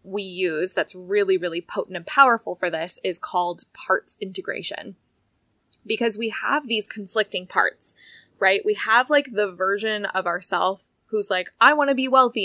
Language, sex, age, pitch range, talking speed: English, female, 20-39, 190-230 Hz, 170 wpm